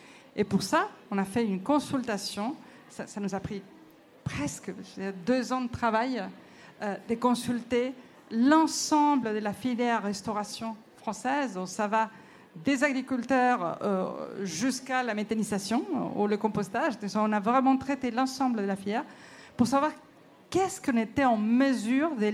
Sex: female